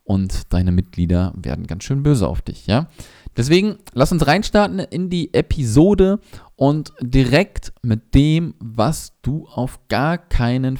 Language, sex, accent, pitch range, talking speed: German, male, German, 100-135 Hz, 145 wpm